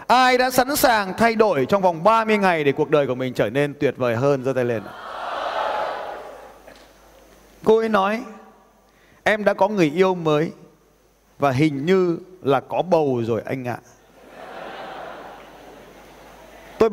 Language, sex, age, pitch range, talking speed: Vietnamese, male, 20-39, 140-205 Hz, 150 wpm